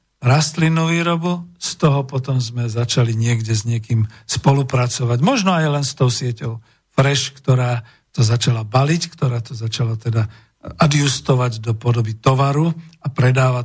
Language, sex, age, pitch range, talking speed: Slovak, male, 50-69, 120-150 Hz, 140 wpm